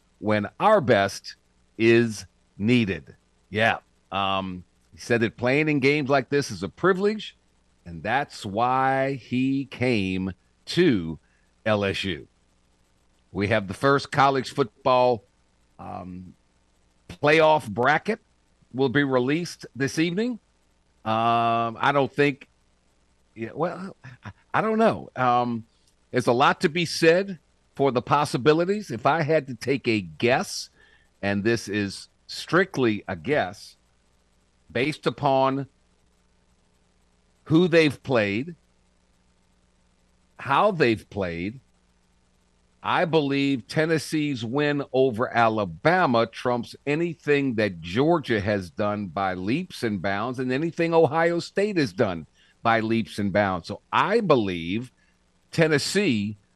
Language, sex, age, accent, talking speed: English, male, 50-69, American, 120 wpm